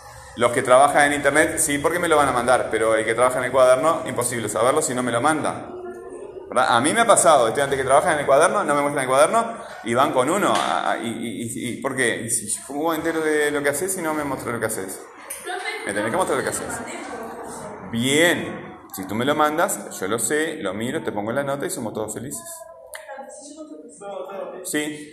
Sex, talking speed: male, 230 wpm